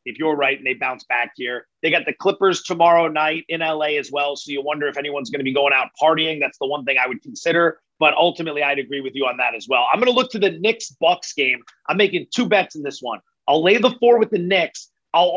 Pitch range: 160-205 Hz